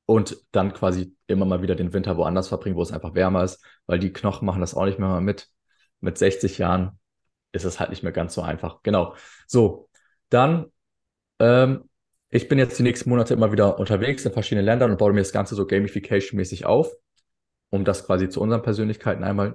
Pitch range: 95-115 Hz